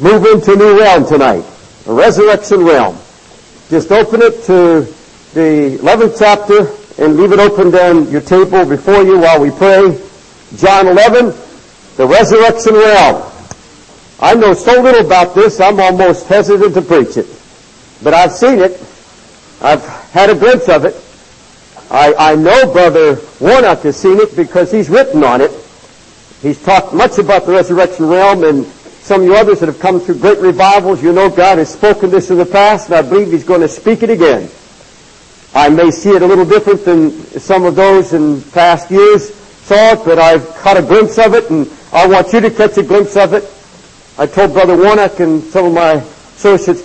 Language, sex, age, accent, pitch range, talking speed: English, male, 60-79, American, 165-205 Hz, 185 wpm